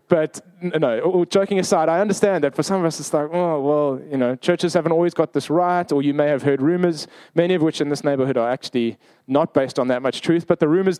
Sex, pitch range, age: male, 140-170 Hz, 20-39